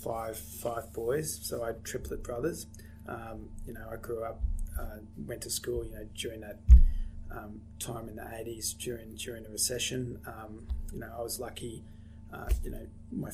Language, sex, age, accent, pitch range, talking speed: English, male, 20-39, Australian, 105-120 Hz, 185 wpm